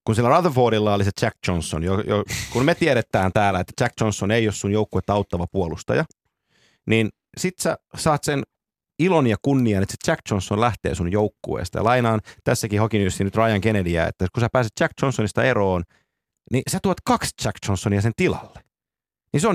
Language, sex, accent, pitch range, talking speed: Finnish, male, native, 100-130 Hz, 190 wpm